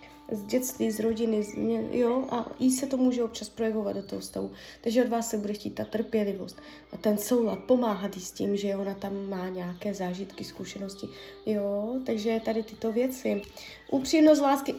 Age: 20-39